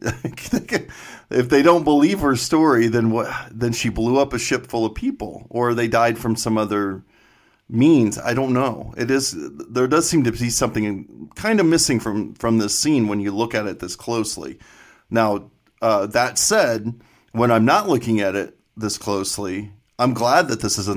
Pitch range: 100-120 Hz